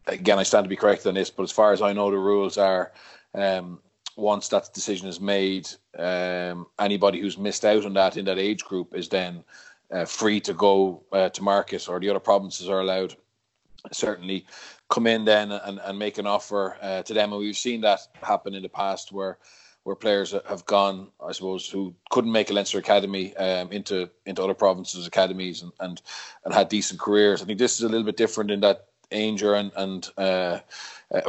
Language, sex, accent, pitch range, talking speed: English, male, Irish, 95-110 Hz, 205 wpm